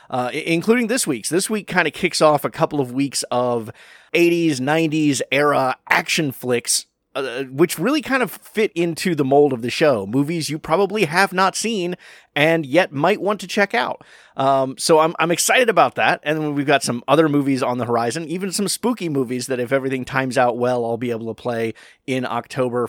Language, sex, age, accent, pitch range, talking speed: English, male, 30-49, American, 125-170 Hz, 210 wpm